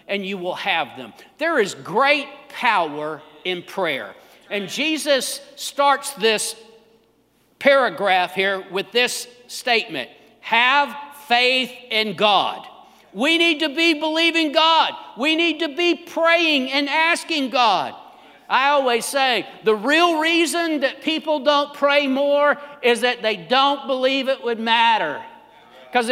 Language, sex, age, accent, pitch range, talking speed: English, male, 50-69, American, 235-295 Hz, 135 wpm